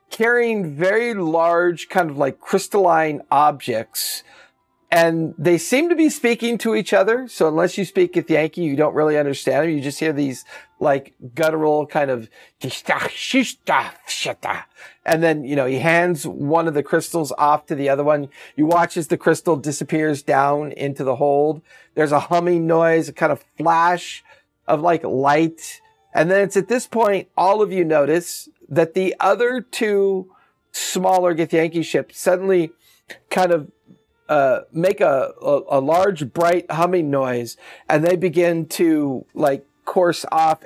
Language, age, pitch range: English, 40-59, 150-185 Hz